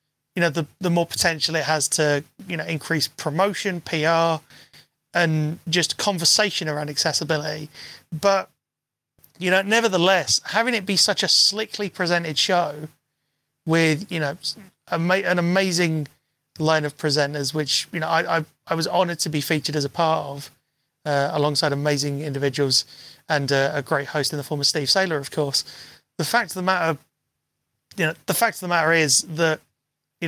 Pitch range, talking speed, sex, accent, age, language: 150-185 Hz, 170 wpm, male, British, 30-49, English